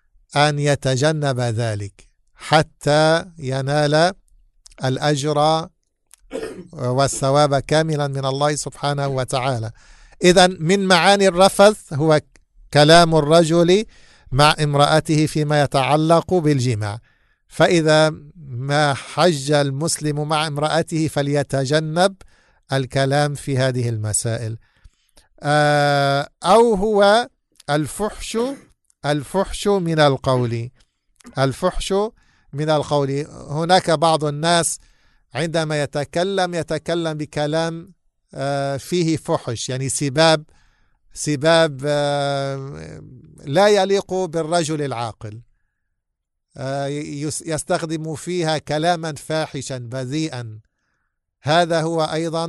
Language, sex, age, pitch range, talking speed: English, male, 50-69, 135-165 Hz, 80 wpm